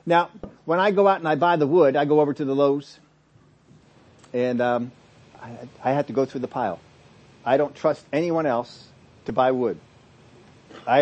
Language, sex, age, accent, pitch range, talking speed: English, male, 50-69, American, 130-160 Hz, 190 wpm